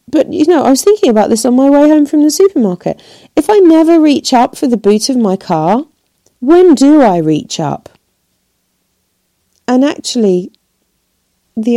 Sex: female